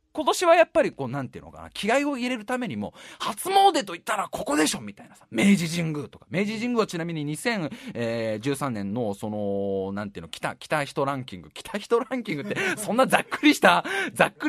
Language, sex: Japanese, male